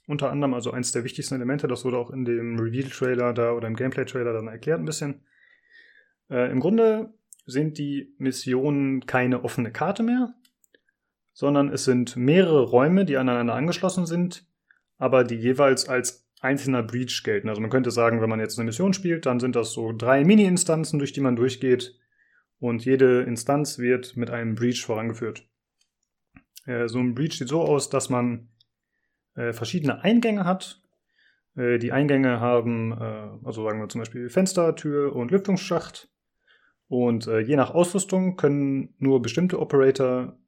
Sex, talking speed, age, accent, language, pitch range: male, 160 wpm, 30-49, German, German, 120-155 Hz